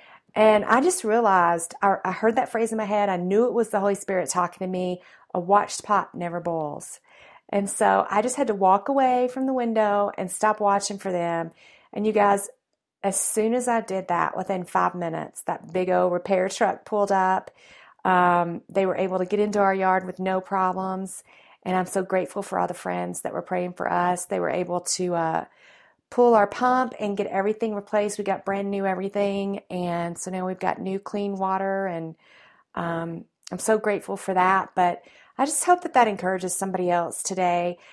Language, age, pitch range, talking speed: English, 40-59, 180-210 Hz, 205 wpm